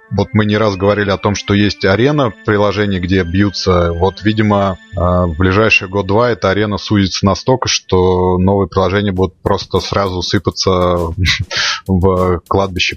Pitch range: 95-105 Hz